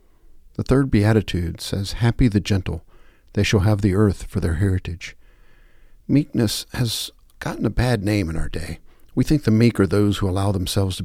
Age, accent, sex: 50-69, American, male